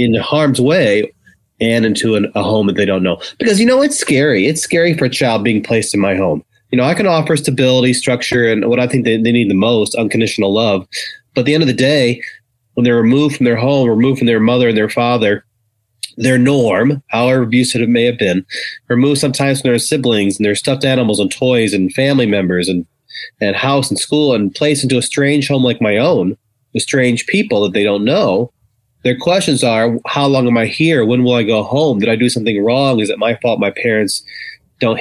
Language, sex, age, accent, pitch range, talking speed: English, male, 30-49, American, 105-135 Hz, 230 wpm